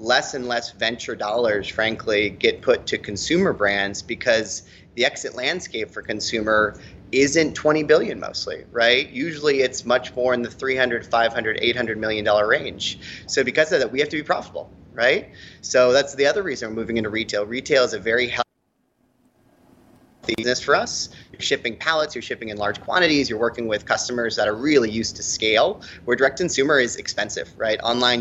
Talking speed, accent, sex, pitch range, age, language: 185 wpm, American, male, 110-130 Hz, 30-49, English